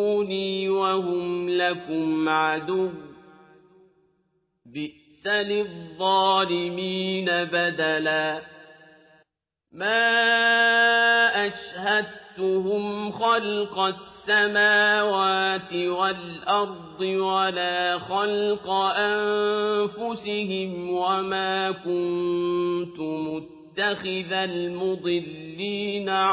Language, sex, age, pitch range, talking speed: Arabic, male, 50-69, 175-210 Hz, 40 wpm